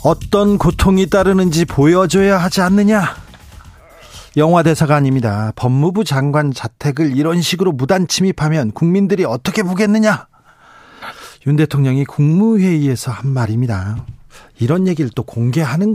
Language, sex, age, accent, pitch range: Korean, male, 40-59, native, 130-180 Hz